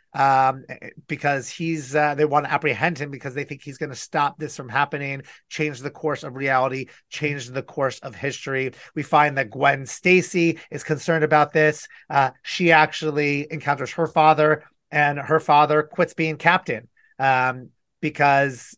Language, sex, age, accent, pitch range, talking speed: English, male, 30-49, American, 135-155 Hz, 165 wpm